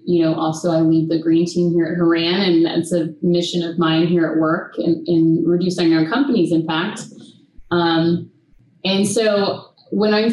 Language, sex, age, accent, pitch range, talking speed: English, female, 30-49, American, 165-190 Hz, 180 wpm